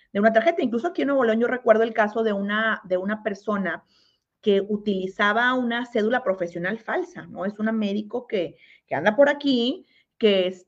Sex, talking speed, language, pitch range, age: female, 180 wpm, Spanish, 185-225 Hz, 40-59